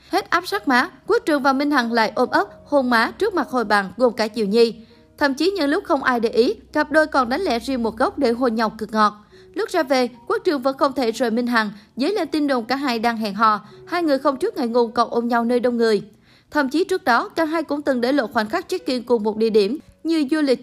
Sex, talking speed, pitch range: female, 275 wpm, 230-305 Hz